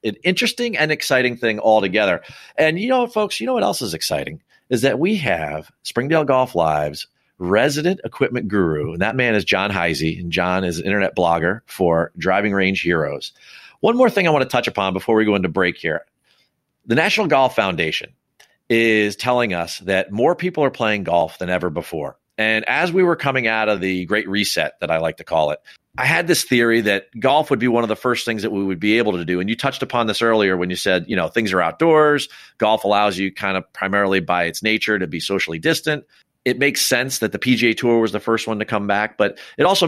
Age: 40-59